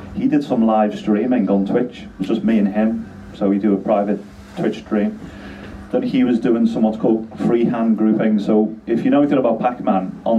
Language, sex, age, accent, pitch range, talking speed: English, male, 40-59, British, 100-110 Hz, 215 wpm